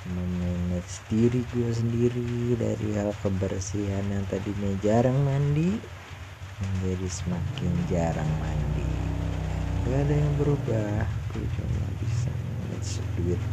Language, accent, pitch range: Indonesian, native, 90-105 Hz